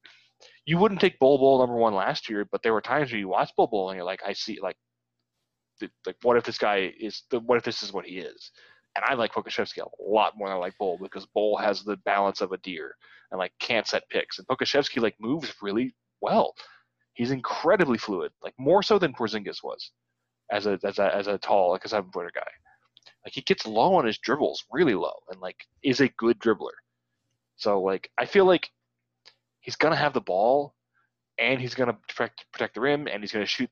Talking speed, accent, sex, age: 230 wpm, American, male, 20-39